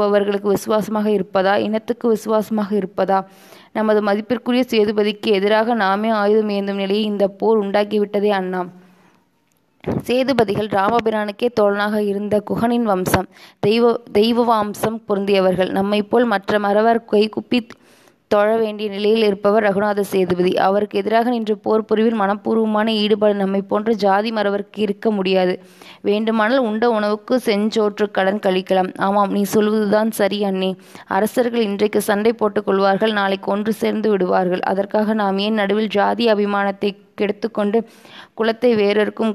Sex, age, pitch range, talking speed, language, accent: female, 20-39, 200-220 Hz, 120 wpm, Tamil, native